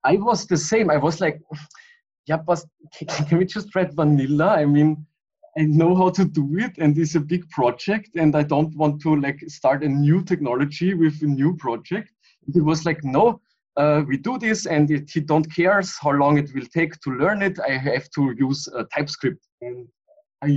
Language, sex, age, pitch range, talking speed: English, male, 20-39, 140-175 Hz, 200 wpm